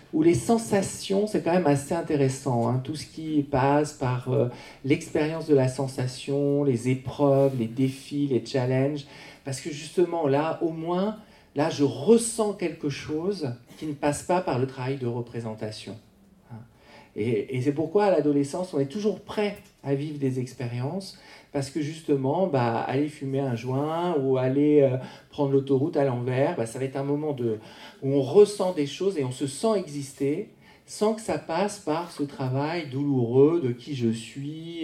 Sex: male